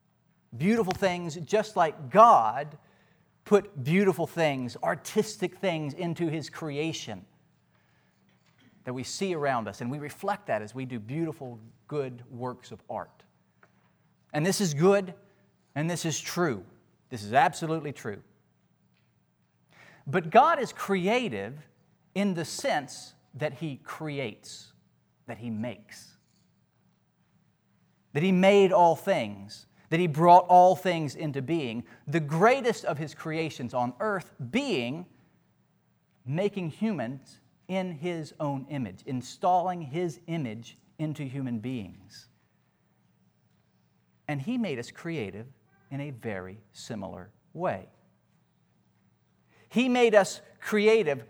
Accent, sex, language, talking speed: American, male, English, 120 wpm